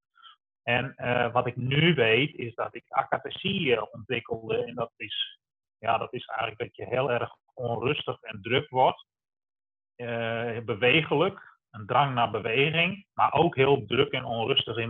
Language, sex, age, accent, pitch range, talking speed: Dutch, male, 30-49, Dutch, 115-135 Hz, 150 wpm